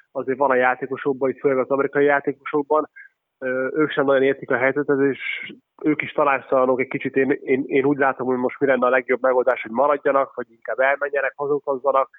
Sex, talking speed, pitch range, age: male, 190 wpm, 130-145 Hz, 20-39